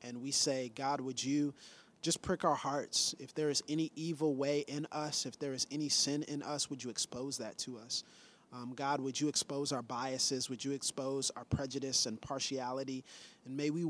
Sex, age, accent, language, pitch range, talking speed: male, 30-49, American, English, 130-160 Hz, 205 wpm